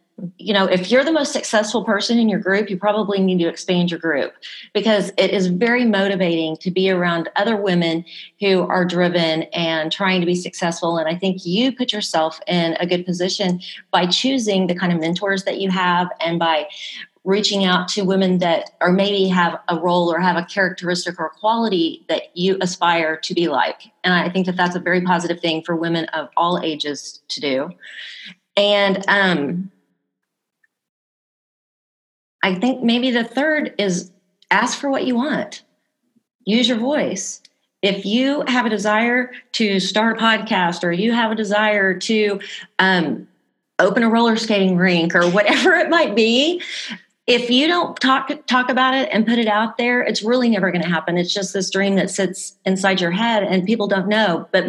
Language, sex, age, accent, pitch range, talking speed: English, female, 30-49, American, 180-225 Hz, 185 wpm